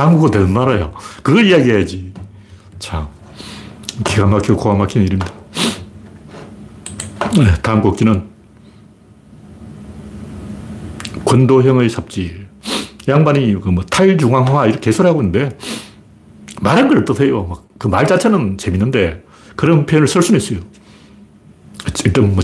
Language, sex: Korean, male